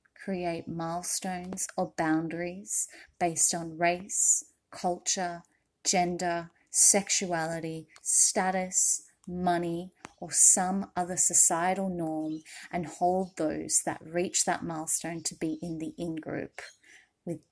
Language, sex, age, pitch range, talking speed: English, female, 30-49, 165-190 Hz, 105 wpm